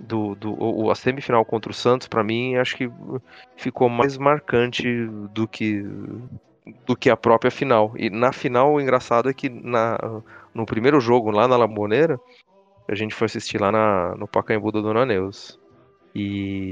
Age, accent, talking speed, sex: 30-49, Brazilian, 170 wpm, male